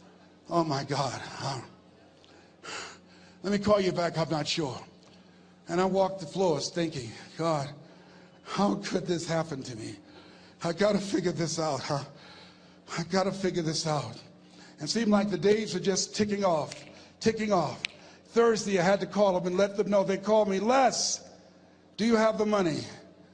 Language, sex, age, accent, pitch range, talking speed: English, male, 60-79, American, 150-210 Hz, 175 wpm